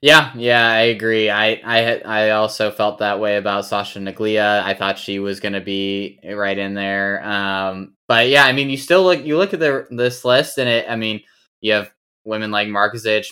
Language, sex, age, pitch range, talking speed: English, male, 10-29, 100-110 Hz, 210 wpm